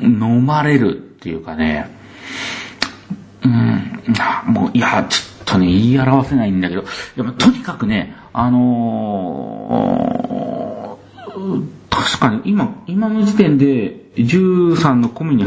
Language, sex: Japanese, male